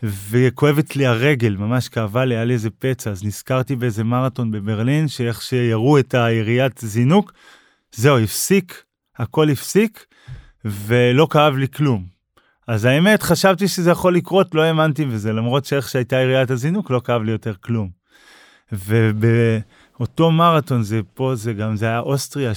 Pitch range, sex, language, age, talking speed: 115-140 Hz, male, Hebrew, 20-39, 150 wpm